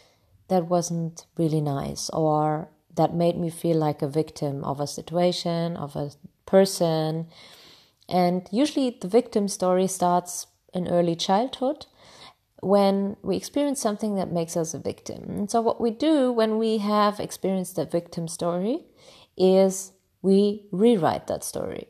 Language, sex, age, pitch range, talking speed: English, female, 30-49, 155-195 Hz, 145 wpm